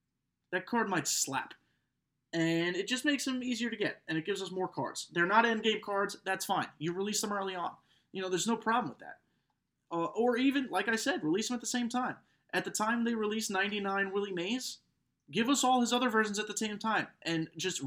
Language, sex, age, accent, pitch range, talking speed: English, male, 20-39, American, 145-220 Hz, 230 wpm